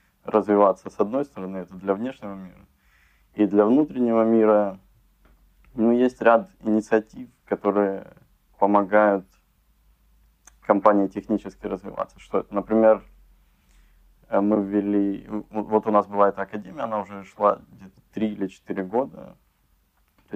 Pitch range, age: 95-105 Hz, 20-39